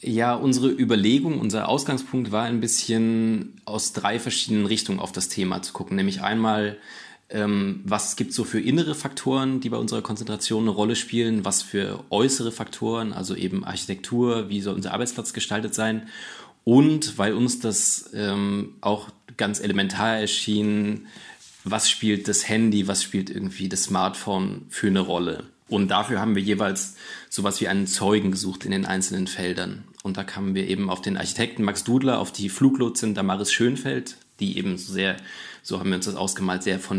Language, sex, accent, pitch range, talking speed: German, male, German, 95-115 Hz, 175 wpm